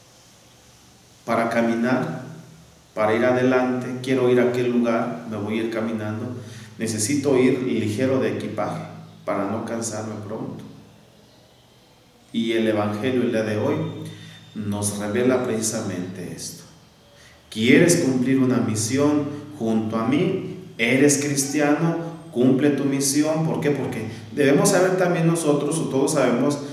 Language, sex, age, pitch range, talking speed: Spanish, male, 40-59, 115-145 Hz, 130 wpm